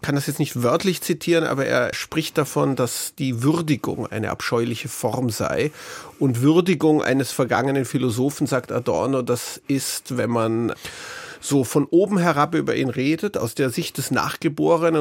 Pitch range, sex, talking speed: 130-160 Hz, male, 165 wpm